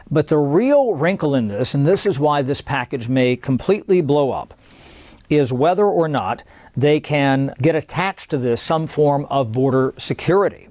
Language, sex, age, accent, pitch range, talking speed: English, male, 50-69, American, 130-155 Hz, 175 wpm